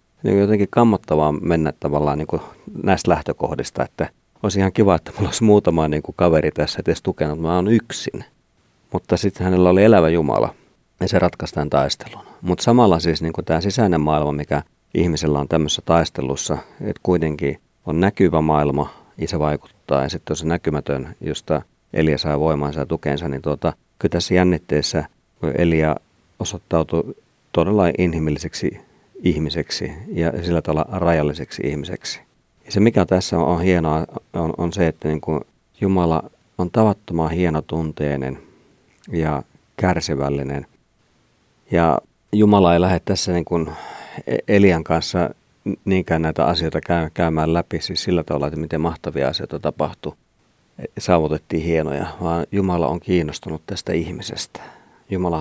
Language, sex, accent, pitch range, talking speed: Finnish, male, native, 75-90 Hz, 130 wpm